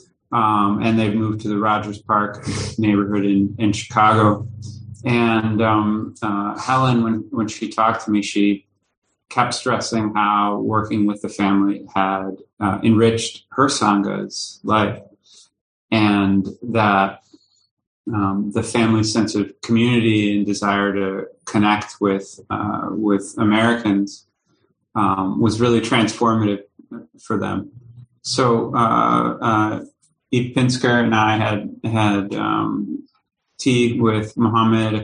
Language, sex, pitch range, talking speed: English, male, 105-115 Hz, 125 wpm